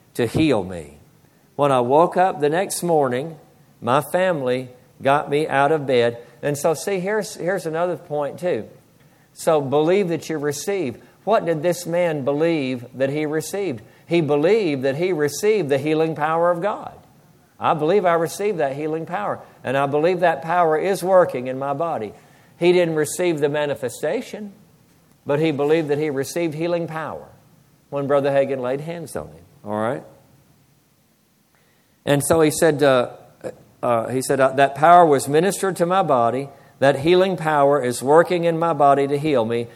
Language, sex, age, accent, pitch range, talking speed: English, male, 60-79, American, 135-170 Hz, 165 wpm